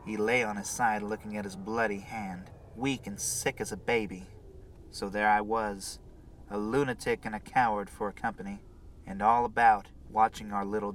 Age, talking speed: 30-49, 185 wpm